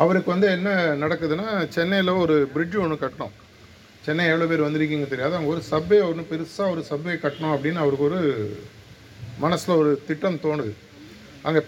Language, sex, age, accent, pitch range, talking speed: Tamil, male, 50-69, native, 130-170 Hz, 155 wpm